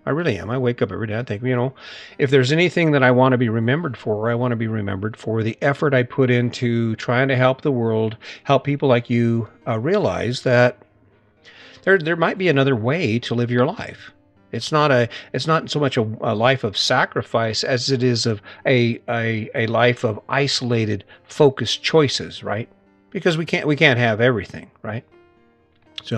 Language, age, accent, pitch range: English, 50-69, American, 115-140 Hz